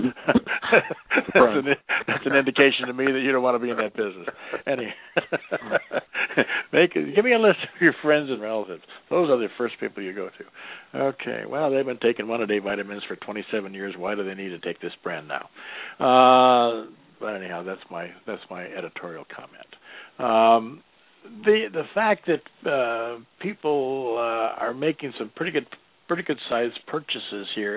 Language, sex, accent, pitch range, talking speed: English, male, American, 110-140 Hz, 180 wpm